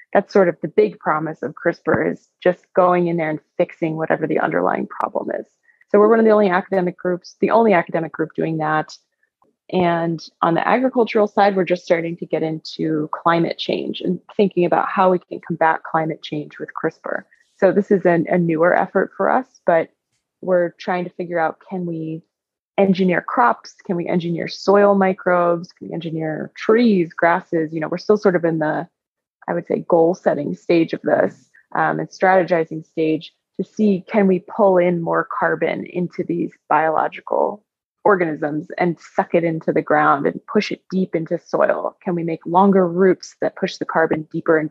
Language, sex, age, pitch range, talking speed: English, female, 20-39, 165-195 Hz, 190 wpm